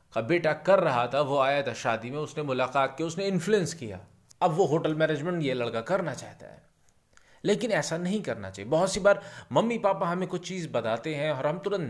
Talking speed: 215 wpm